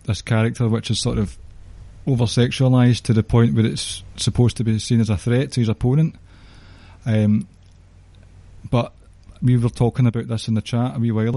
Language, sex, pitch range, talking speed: English, male, 100-120 Hz, 185 wpm